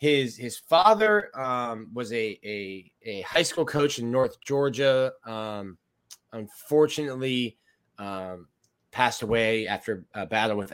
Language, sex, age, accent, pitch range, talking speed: English, male, 20-39, American, 105-130 Hz, 130 wpm